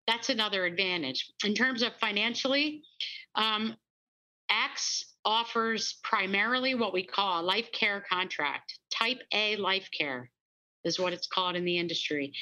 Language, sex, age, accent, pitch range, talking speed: English, female, 50-69, American, 180-230 Hz, 140 wpm